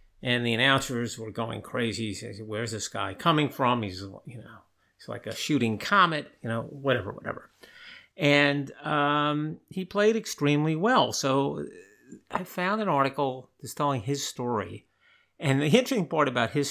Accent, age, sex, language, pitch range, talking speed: American, 50-69, male, English, 110-145 Hz, 165 wpm